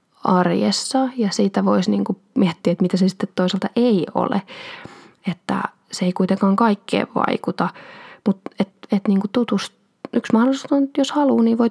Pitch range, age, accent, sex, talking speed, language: 180-235 Hz, 20-39, native, female, 160 wpm, Finnish